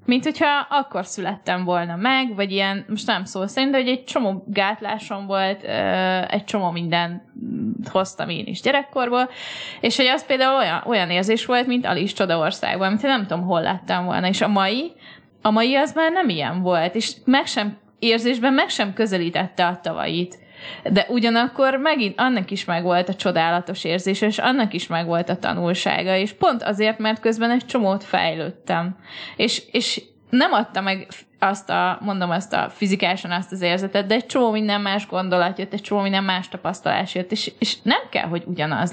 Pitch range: 180-230 Hz